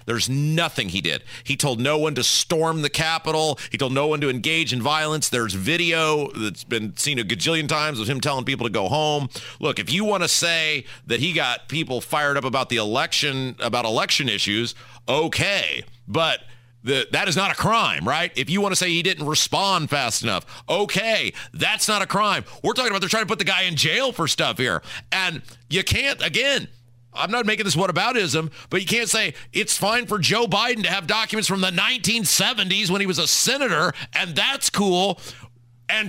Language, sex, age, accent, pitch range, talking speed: English, male, 40-59, American, 135-220 Hz, 205 wpm